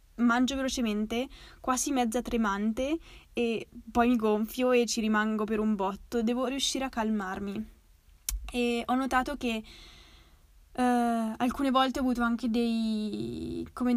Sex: female